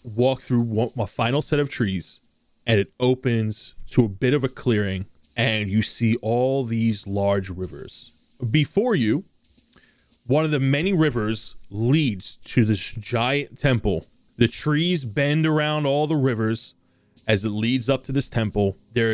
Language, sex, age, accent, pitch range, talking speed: English, male, 30-49, American, 110-135 Hz, 155 wpm